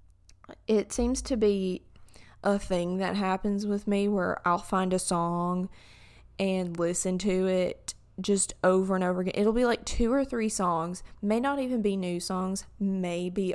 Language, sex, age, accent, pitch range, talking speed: English, female, 20-39, American, 175-200 Hz, 175 wpm